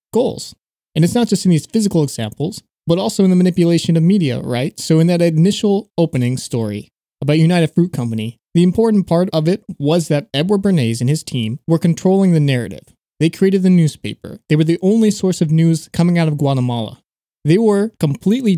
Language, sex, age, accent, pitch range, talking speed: English, male, 20-39, American, 135-175 Hz, 195 wpm